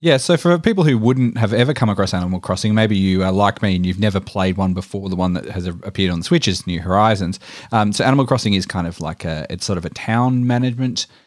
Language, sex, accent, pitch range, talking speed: English, male, Australian, 95-110 Hz, 250 wpm